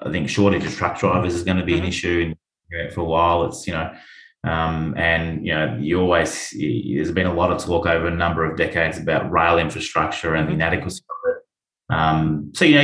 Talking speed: 220 wpm